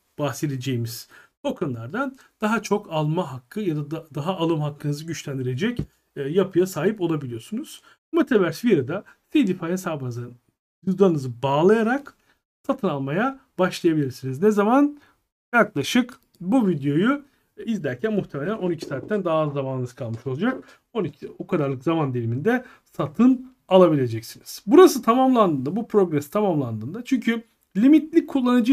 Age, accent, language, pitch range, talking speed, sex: 40-59, native, Turkish, 155-235 Hz, 115 wpm, male